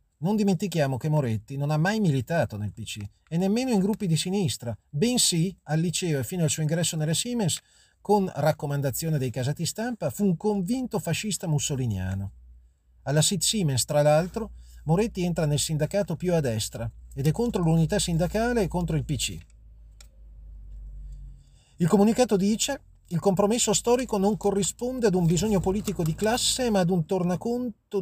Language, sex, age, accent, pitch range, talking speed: Italian, male, 40-59, native, 140-195 Hz, 160 wpm